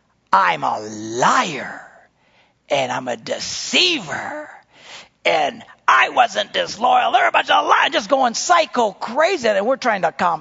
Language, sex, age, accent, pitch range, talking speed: English, male, 50-69, American, 130-185 Hz, 145 wpm